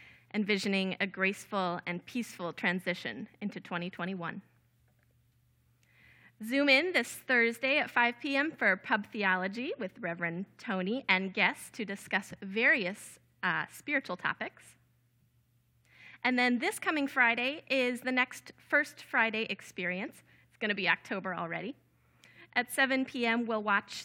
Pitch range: 190-250 Hz